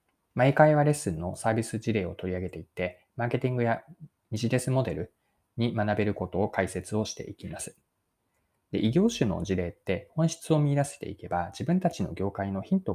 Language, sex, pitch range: Japanese, male, 95-145 Hz